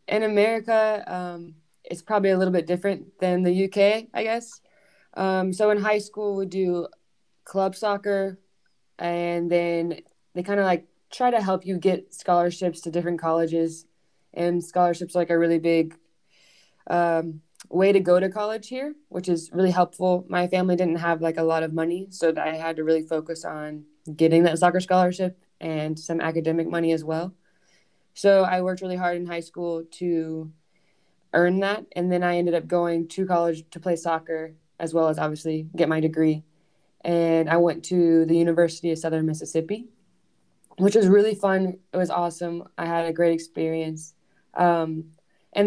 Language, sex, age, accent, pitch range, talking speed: English, female, 20-39, American, 165-190 Hz, 175 wpm